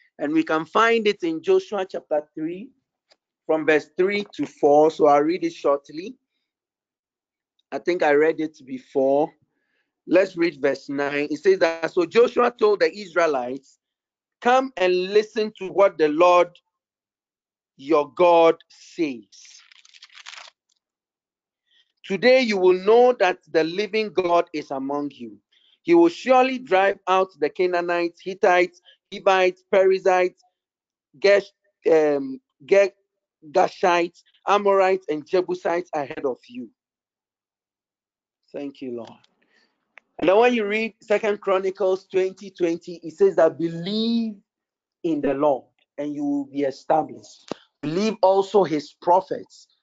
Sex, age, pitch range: male, 50-69, 150-215 Hz